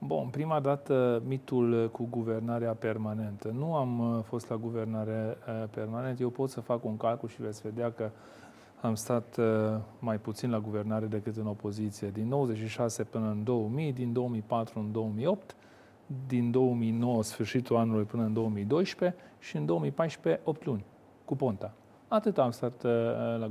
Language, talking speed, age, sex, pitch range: Romanian, 150 wpm, 40-59, male, 110-130 Hz